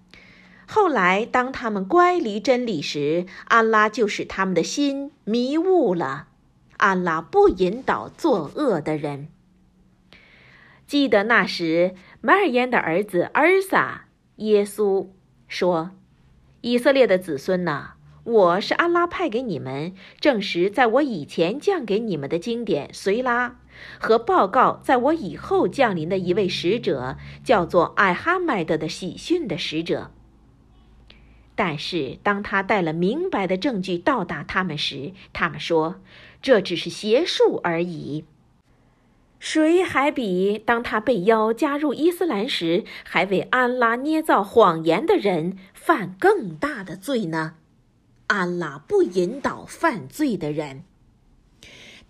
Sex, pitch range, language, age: female, 175-285 Hz, Chinese, 50-69